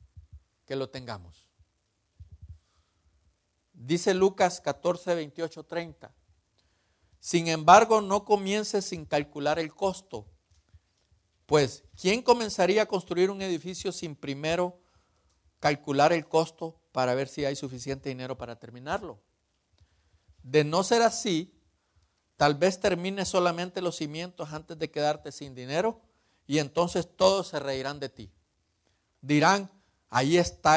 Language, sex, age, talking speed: Spanish, male, 50-69, 115 wpm